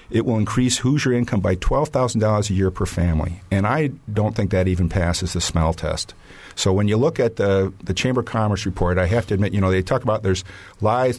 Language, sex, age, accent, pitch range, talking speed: English, male, 50-69, American, 90-110 Hz, 230 wpm